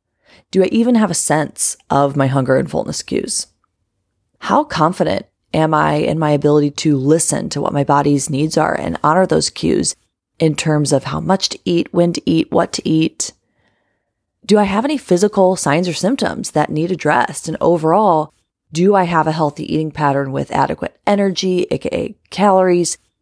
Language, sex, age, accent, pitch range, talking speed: English, female, 30-49, American, 145-180 Hz, 180 wpm